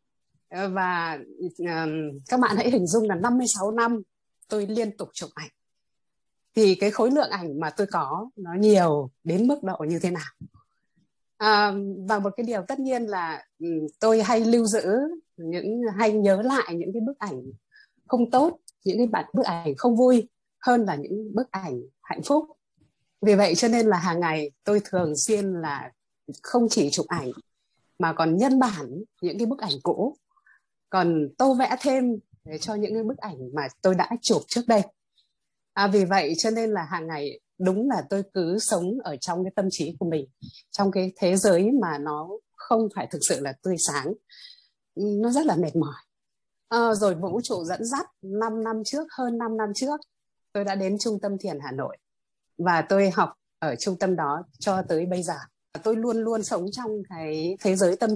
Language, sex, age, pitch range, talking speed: Vietnamese, female, 20-39, 175-230 Hz, 190 wpm